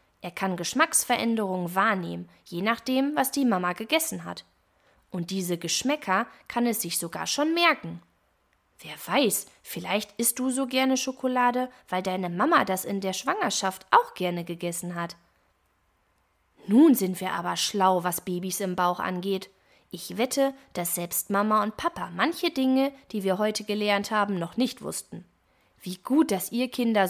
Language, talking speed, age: German, 155 wpm, 20-39